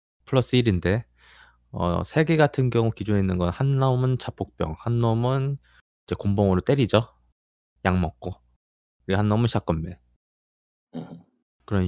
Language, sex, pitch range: Korean, male, 90-130 Hz